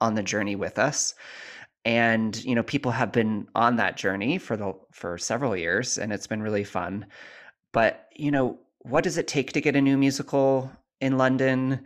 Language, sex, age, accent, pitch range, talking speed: English, male, 30-49, American, 110-135 Hz, 190 wpm